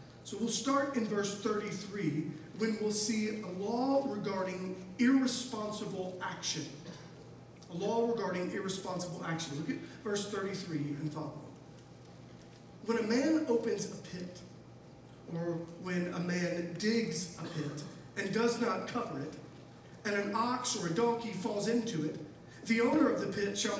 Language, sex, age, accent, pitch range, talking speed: English, male, 40-59, American, 180-235 Hz, 145 wpm